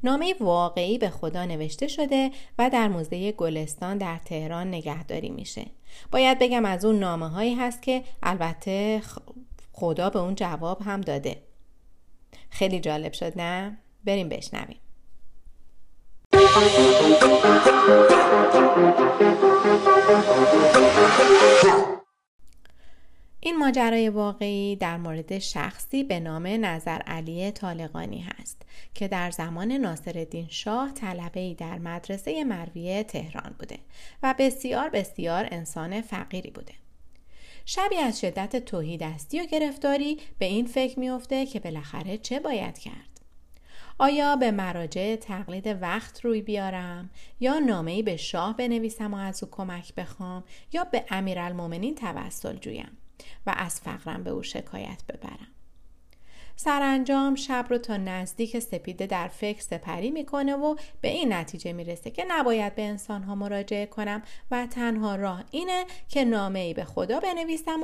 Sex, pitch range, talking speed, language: female, 175-255 Hz, 125 wpm, Persian